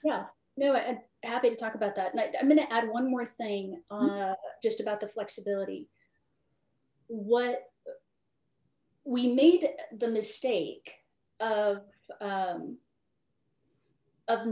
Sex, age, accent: female, 30-49, American